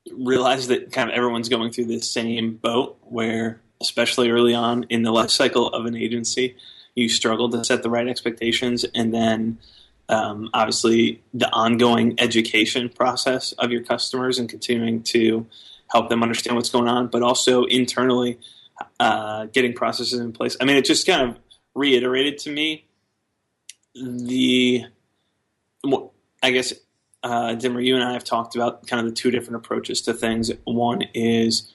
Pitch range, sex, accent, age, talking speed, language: 115-125 Hz, male, American, 20-39, 165 wpm, English